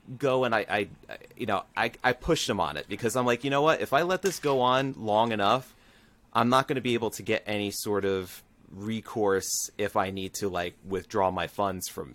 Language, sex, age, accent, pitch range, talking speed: English, male, 30-49, American, 100-120 Hz, 230 wpm